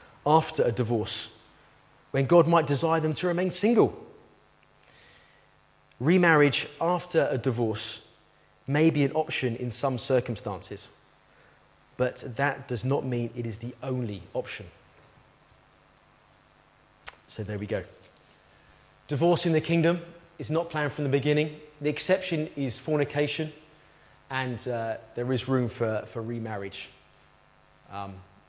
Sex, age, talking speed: male, 30-49, 125 wpm